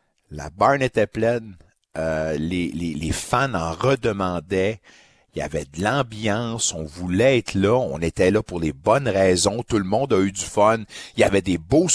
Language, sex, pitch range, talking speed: French, male, 95-130 Hz, 195 wpm